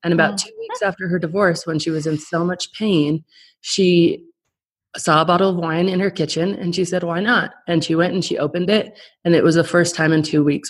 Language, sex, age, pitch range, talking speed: English, female, 30-49, 155-190 Hz, 245 wpm